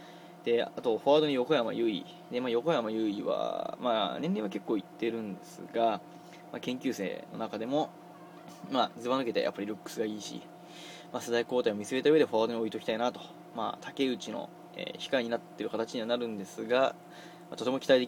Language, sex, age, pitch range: Japanese, male, 20-39, 115-165 Hz